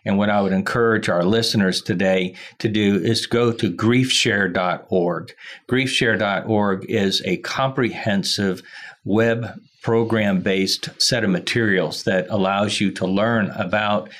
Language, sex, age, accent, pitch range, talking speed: English, male, 50-69, American, 95-115 Hz, 125 wpm